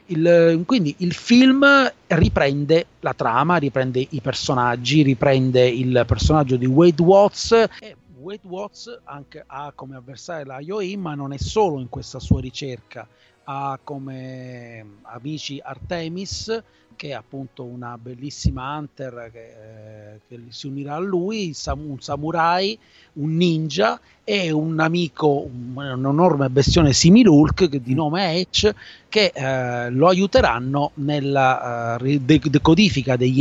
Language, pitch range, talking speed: Italian, 130-170 Hz, 125 wpm